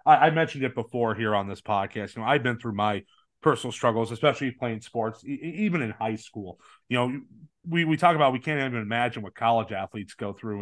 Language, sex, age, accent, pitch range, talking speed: English, male, 30-49, American, 110-135 Hz, 215 wpm